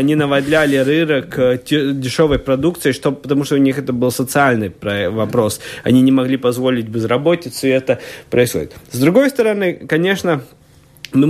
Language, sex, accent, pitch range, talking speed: Russian, male, native, 125-165 Hz, 140 wpm